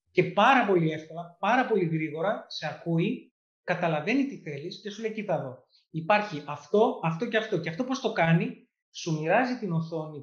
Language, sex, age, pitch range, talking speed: Greek, male, 30-49, 165-225 Hz, 180 wpm